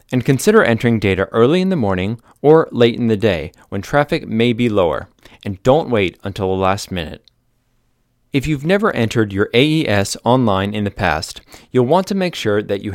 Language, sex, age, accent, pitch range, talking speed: English, male, 30-49, American, 100-140 Hz, 195 wpm